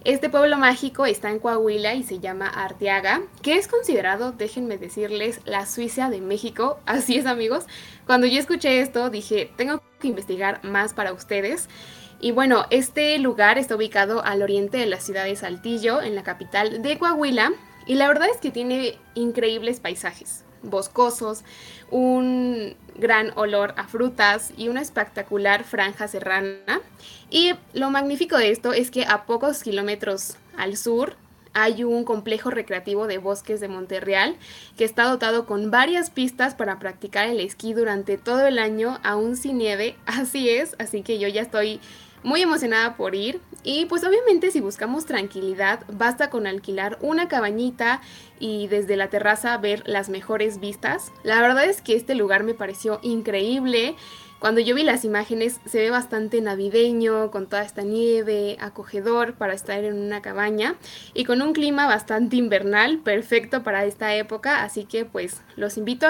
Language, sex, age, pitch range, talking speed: Spanish, female, 10-29, 205-250 Hz, 165 wpm